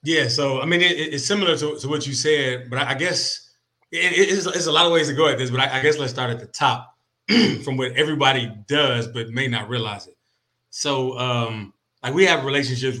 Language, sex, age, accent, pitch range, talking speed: English, male, 20-39, American, 115-140 Hz, 230 wpm